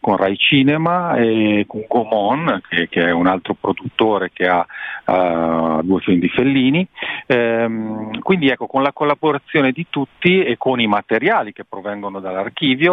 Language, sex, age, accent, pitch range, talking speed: Italian, male, 40-59, native, 100-140 Hz, 160 wpm